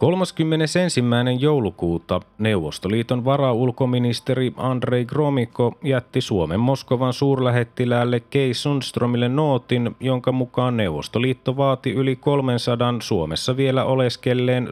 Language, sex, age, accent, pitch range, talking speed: Finnish, male, 30-49, native, 110-130 Hz, 90 wpm